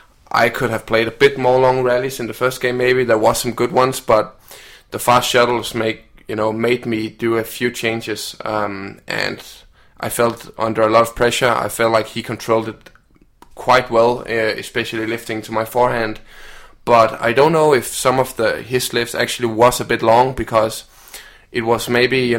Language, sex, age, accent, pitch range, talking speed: Danish, male, 20-39, native, 110-120 Hz, 200 wpm